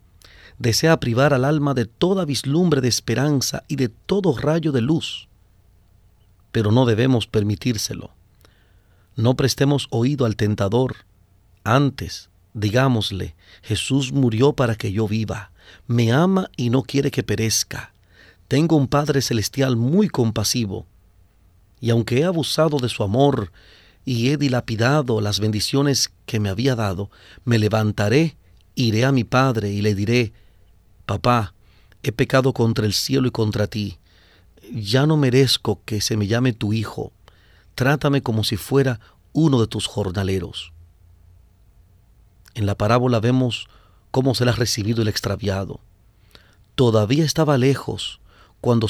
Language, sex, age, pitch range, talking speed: English, male, 40-59, 100-130 Hz, 135 wpm